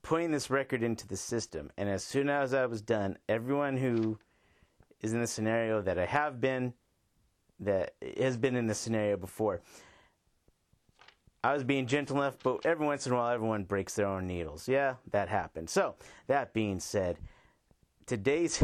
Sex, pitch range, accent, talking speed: male, 100-130 Hz, American, 175 wpm